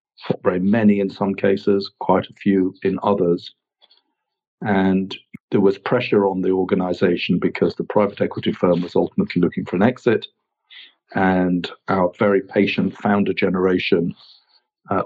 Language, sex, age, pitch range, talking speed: English, male, 50-69, 95-105 Hz, 140 wpm